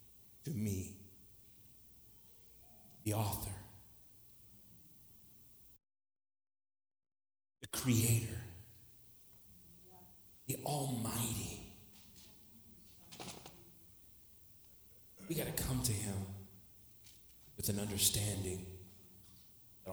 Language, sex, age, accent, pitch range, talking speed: English, male, 40-59, American, 95-115 Hz, 50 wpm